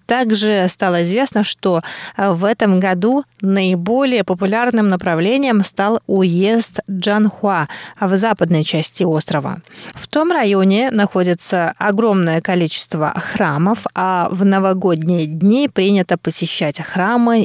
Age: 20-39